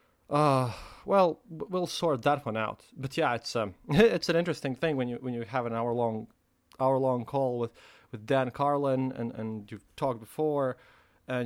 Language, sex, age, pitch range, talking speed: English, male, 20-39, 120-155 Hz, 190 wpm